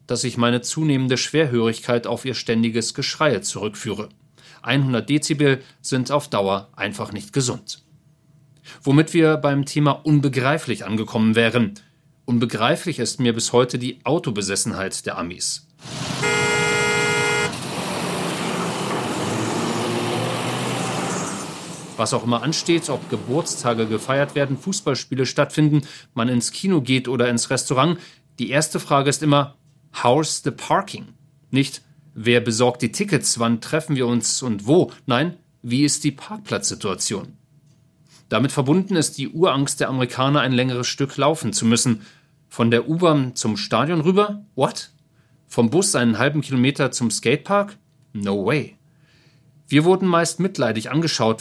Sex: male